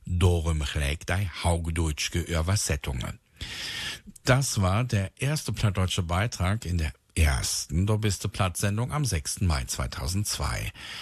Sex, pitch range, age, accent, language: male, 85-115 Hz, 60-79, German, German